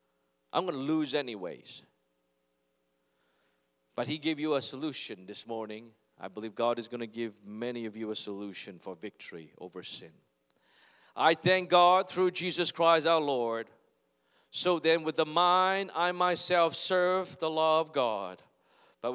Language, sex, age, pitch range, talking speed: English, male, 40-59, 105-160 Hz, 155 wpm